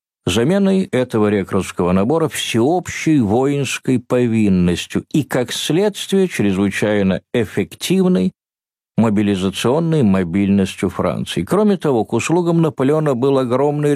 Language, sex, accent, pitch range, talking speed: Russian, male, native, 100-155 Hz, 95 wpm